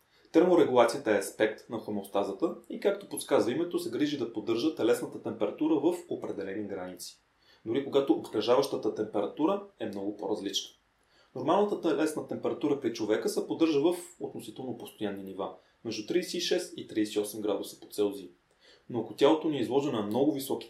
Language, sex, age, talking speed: Bulgarian, male, 30-49, 150 wpm